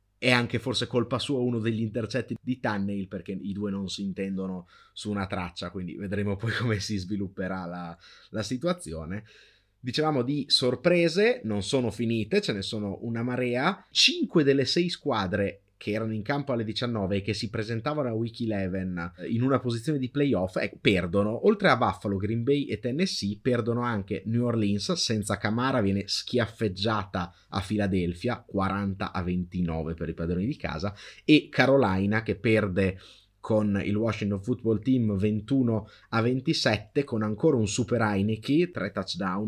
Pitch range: 100-125 Hz